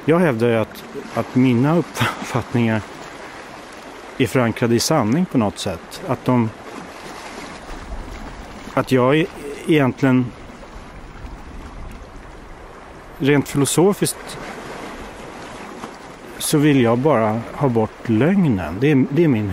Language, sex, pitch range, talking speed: Swedish, male, 115-145 Hz, 100 wpm